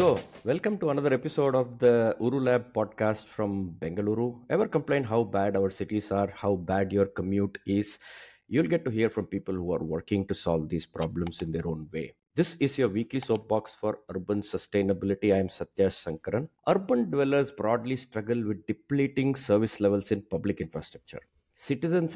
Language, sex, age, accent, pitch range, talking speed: English, male, 50-69, Indian, 95-120 Hz, 175 wpm